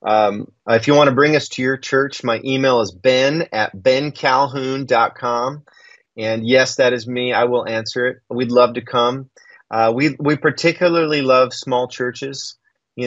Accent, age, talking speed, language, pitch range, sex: American, 30-49, 170 wpm, English, 120-140 Hz, male